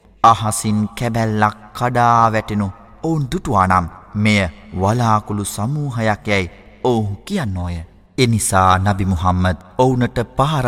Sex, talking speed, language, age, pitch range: male, 130 wpm, Arabic, 30-49, 95-115 Hz